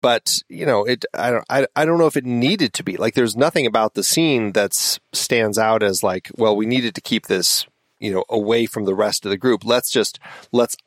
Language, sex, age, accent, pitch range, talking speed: English, male, 30-49, American, 100-130 Hz, 245 wpm